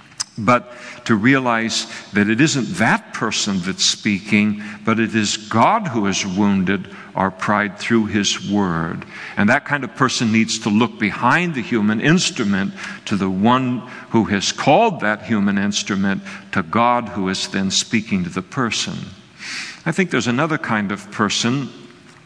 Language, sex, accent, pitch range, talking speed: English, male, American, 100-125 Hz, 160 wpm